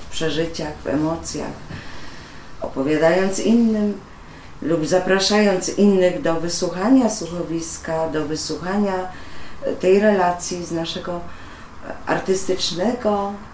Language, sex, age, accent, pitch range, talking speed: Polish, female, 30-49, native, 155-185 Hz, 85 wpm